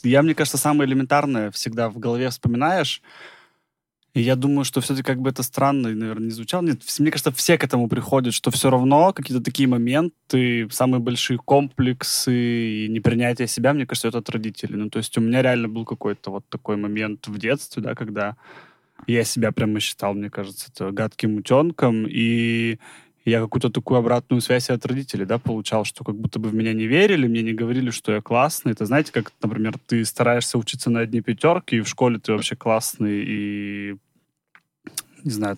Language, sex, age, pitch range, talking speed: Russian, male, 20-39, 110-130 Hz, 185 wpm